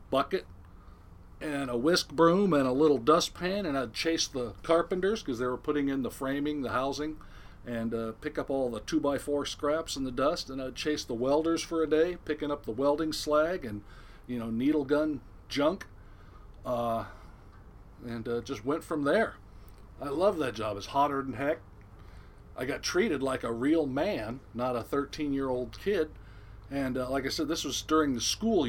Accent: American